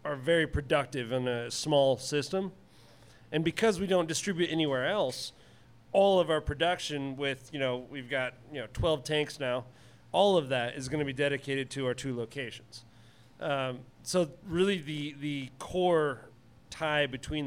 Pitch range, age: 120-155 Hz, 40-59